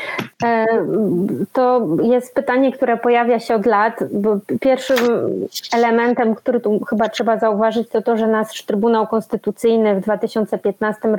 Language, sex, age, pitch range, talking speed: Polish, female, 20-39, 205-235 Hz, 125 wpm